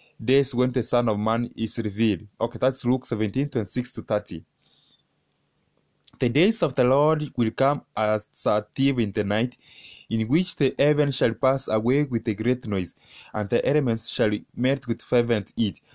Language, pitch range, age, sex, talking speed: English, 110-140 Hz, 20-39, male, 180 wpm